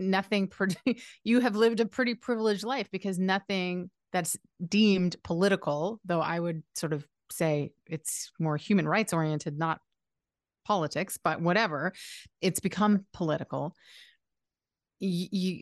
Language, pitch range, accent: English, 160-210 Hz, American